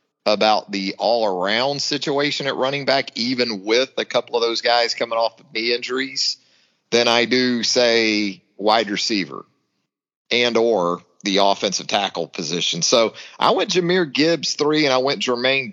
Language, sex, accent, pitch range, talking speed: English, male, American, 100-130 Hz, 155 wpm